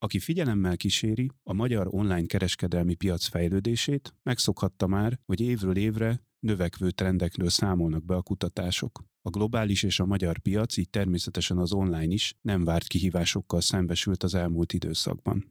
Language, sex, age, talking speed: Hungarian, male, 30-49, 145 wpm